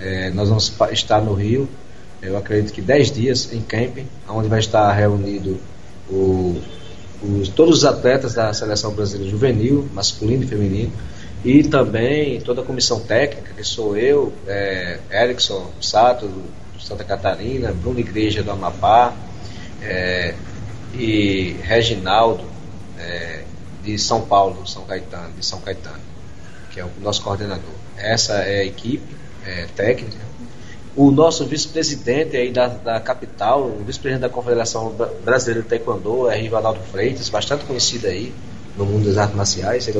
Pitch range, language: 95-120 Hz, Portuguese